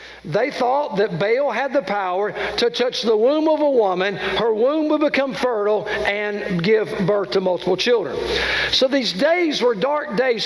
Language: English